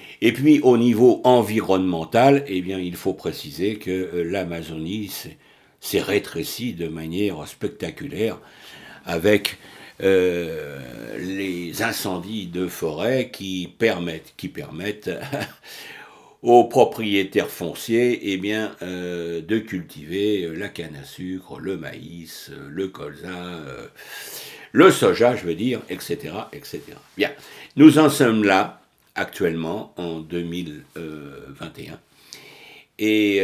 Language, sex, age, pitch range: French, male, 60-79, 85-105 Hz